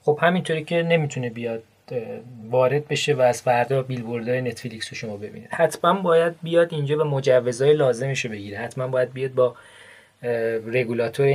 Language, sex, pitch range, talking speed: English, male, 120-150 Hz, 155 wpm